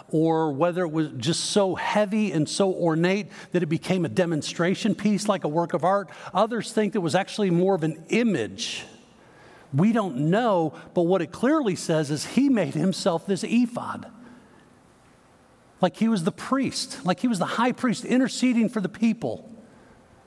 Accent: American